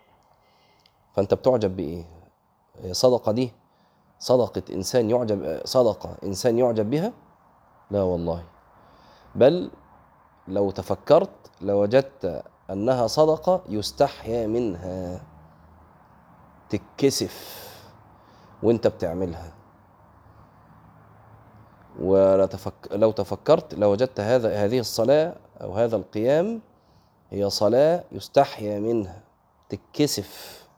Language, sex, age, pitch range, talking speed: Arabic, male, 30-49, 85-115 Hz, 75 wpm